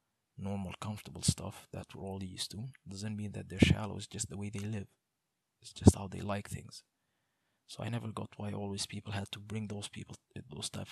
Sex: male